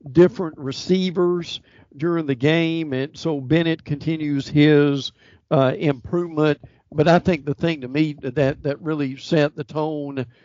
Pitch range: 140-165 Hz